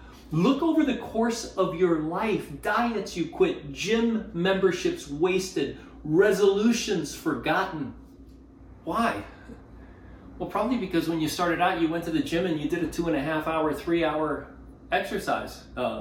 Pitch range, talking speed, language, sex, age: 140-200 Hz, 150 wpm, English, male, 30-49